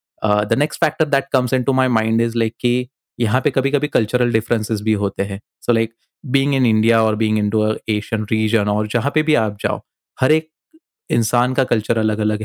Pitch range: 110-125 Hz